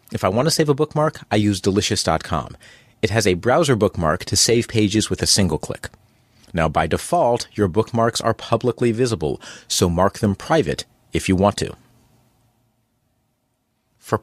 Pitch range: 95-120 Hz